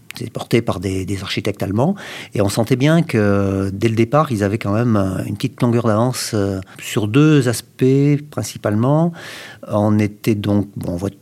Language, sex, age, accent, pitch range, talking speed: French, male, 50-69, French, 100-120 Hz, 175 wpm